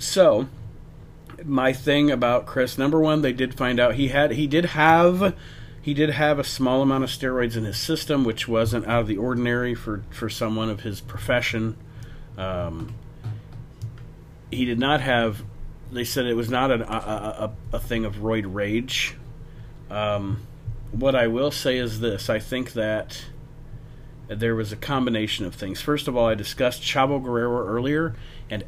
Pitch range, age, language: 110-135 Hz, 40-59, English